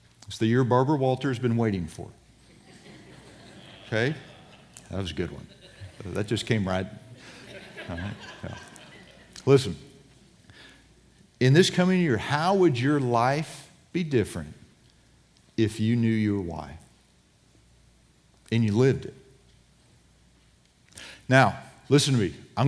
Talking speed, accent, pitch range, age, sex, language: 125 wpm, American, 110-140 Hz, 50-69, male, English